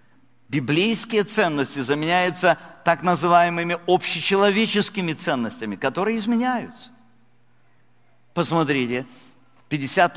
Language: Russian